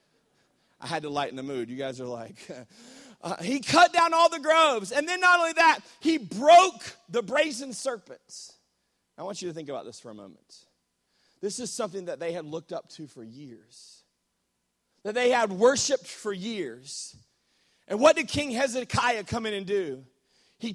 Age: 30-49